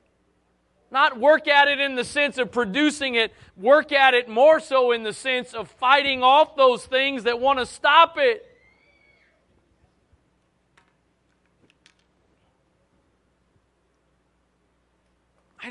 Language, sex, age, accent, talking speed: English, male, 40-59, American, 110 wpm